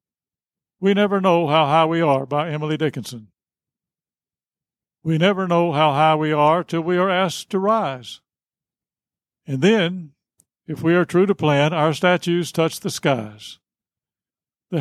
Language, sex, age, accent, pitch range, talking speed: English, male, 60-79, American, 150-180 Hz, 150 wpm